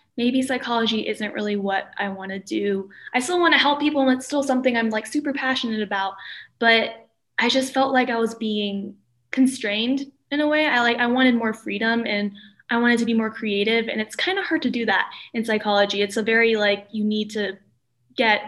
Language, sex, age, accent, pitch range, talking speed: English, female, 10-29, American, 210-255 Hz, 220 wpm